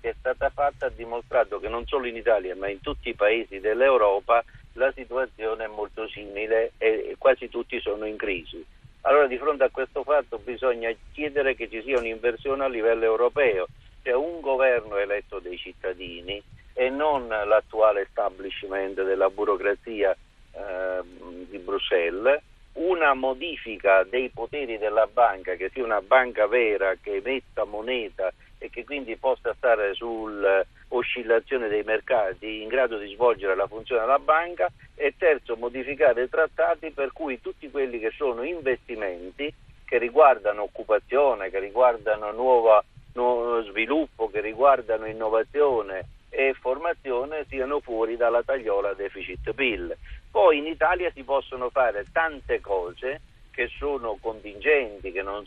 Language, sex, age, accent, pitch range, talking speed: Italian, male, 50-69, native, 110-145 Hz, 145 wpm